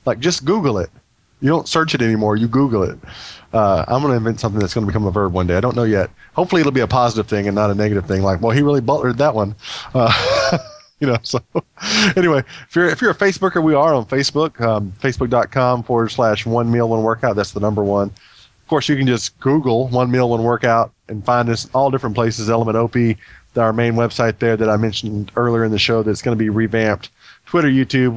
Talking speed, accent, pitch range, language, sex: 235 wpm, American, 110-130 Hz, English, male